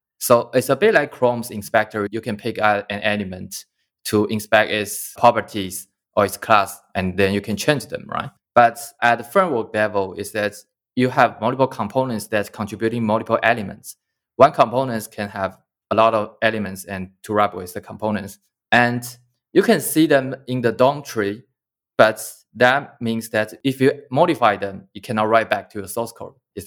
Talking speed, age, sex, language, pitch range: 180 wpm, 20-39, male, English, 105-125 Hz